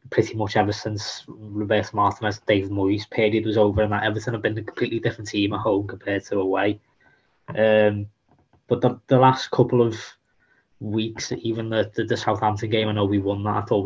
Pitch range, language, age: 105-120 Hz, English, 20-39